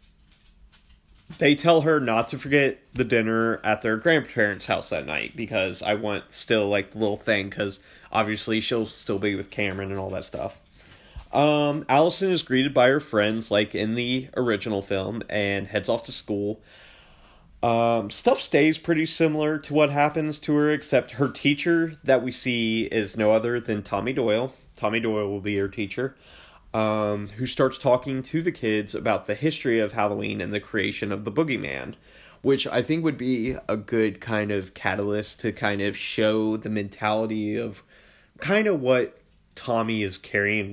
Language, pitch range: English, 105-135 Hz